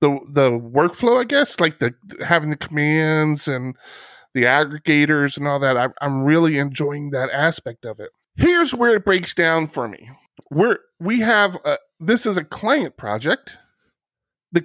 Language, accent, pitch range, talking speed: English, American, 135-175 Hz, 170 wpm